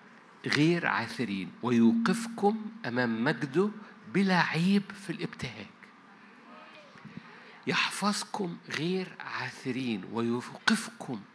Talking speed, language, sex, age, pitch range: 70 wpm, Arabic, male, 50-69, 150-210 Hz